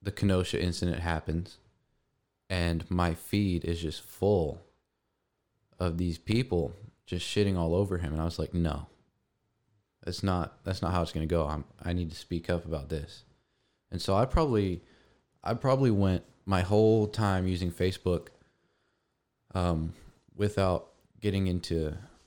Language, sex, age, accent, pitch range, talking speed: English, male, 20-39, American, 85-105 Hz, 150 wpm